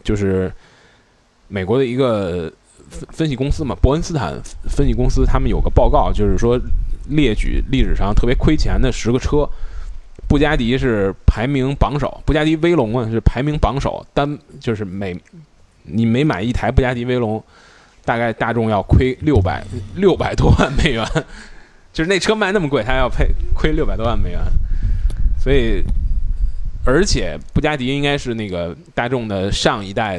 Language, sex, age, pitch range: Chinese, male, 20-39, 95-130 Hz